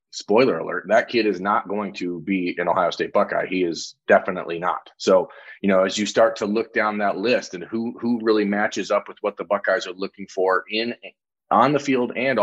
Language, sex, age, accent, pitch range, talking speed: English, male, 30-49, American, 95-130 Hz, 220 wpm